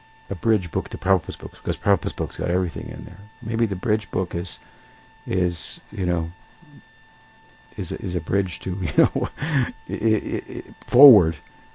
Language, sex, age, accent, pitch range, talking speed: English, male, 60-79, American, 95-125 Hz, 155 wpm